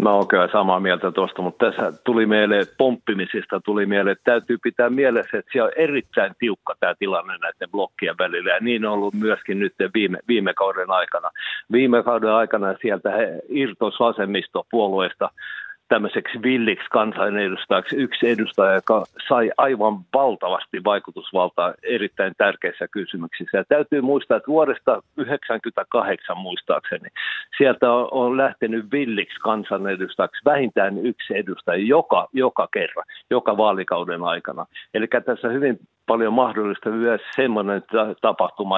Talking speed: 135 wpm